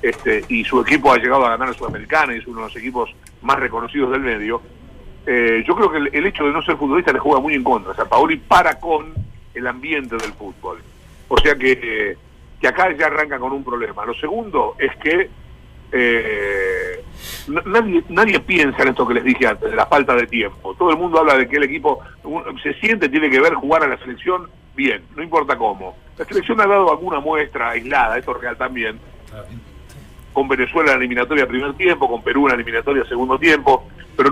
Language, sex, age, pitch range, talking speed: Spanish, male, 50-69, 125-180 Hz, 215 wpm